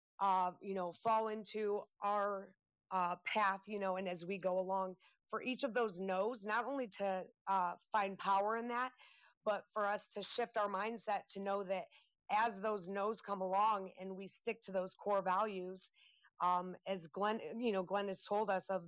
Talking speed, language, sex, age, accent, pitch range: 190 wpm, English, female, 30-49, American, 185-215 Hz